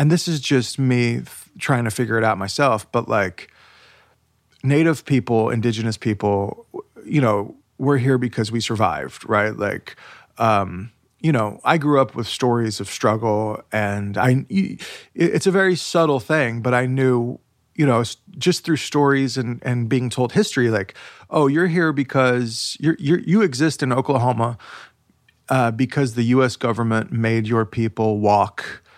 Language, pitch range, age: English, 115-145 Hz, 30-49